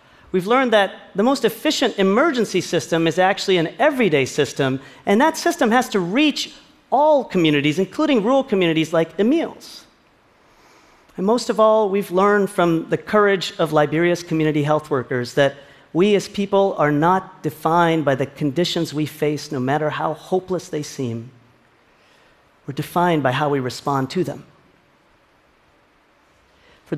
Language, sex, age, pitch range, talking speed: Arabic, male, 40-59, 150-205 Hz, 150 wpm